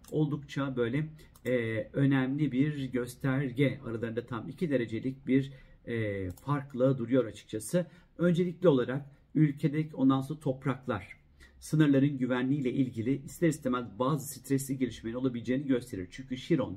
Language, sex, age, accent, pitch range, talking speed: Turkish, male, 50-69, native, 125-140 Hz, 120 wpm